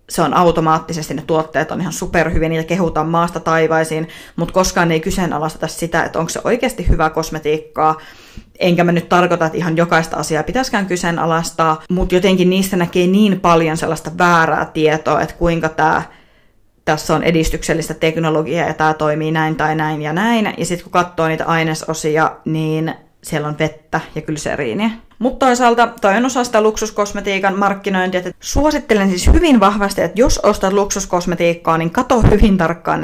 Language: Finnish